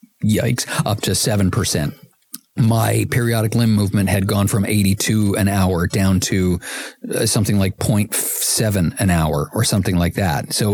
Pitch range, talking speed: 100-115 Hz, 155 wpm